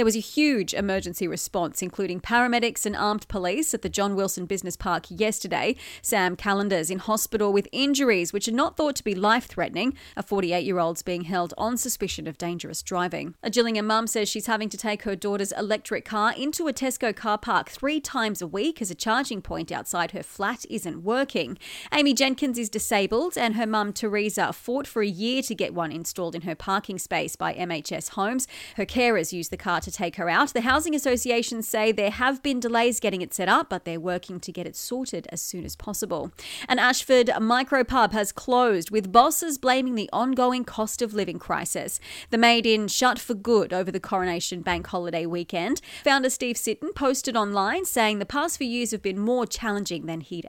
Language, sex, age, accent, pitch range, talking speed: English, female, 30-49, Australian, 190-250 Hz, 195 wpm